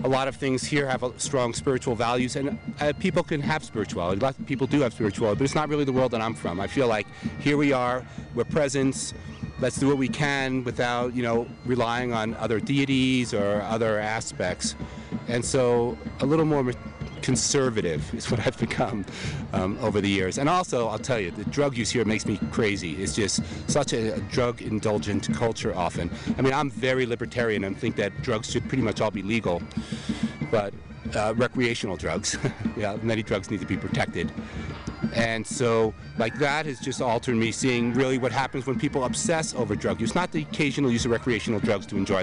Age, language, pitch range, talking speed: 40-59, English, 110-135 Hz, 200 wpm